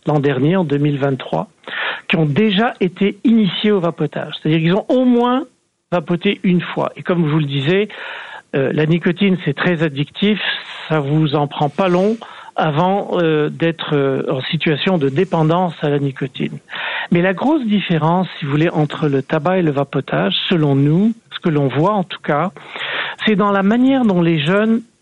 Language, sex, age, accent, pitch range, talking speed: French, male, 50-69, French, 160-205 Hz, 175 wpm